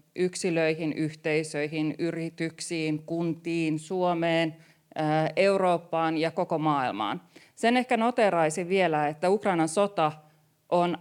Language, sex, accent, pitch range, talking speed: Finnish, female, native, 155-185 Hz, 95 wpm